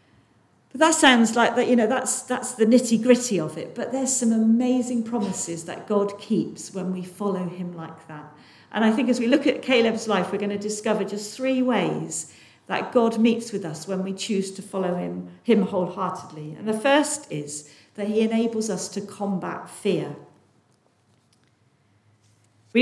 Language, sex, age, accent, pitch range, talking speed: English, female, 50-69, British, 170-230 Hz, 180 wpm